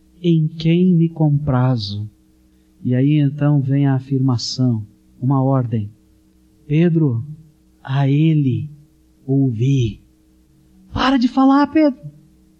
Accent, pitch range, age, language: Brazilian, 110-175 Hz, 50-69, Portuguese